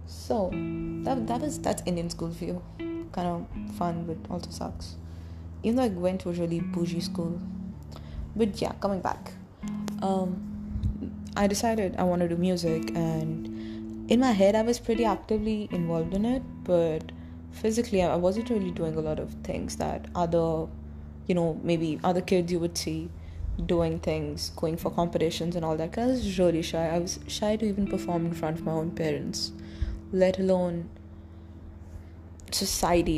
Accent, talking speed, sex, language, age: Indian, 170 wpm, female, English, 20-39